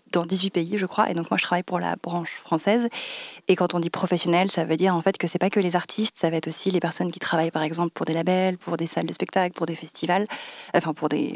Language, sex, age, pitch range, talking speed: French, female, 20-39, 165-185 Hz, 285 wpm